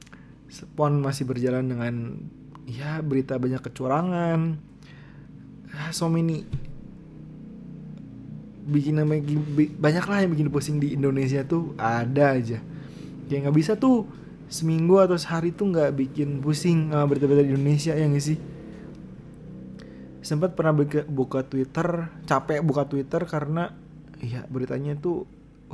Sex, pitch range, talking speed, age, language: male, 130-150 Hz, 115 wpm, 20-39, Indonesian